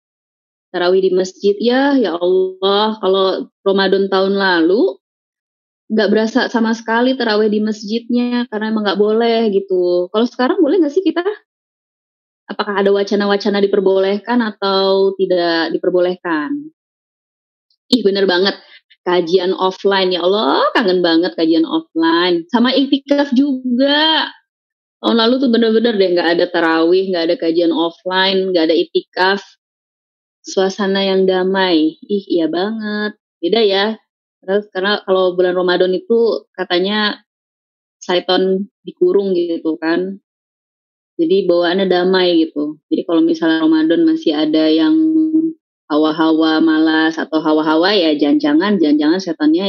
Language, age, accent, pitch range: Indonesian, 20-39, native, 180-245 Hz